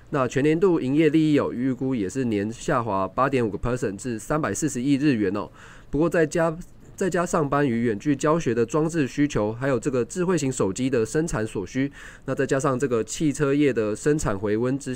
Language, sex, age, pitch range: Chinese, male, 20-39, 110-150 Hz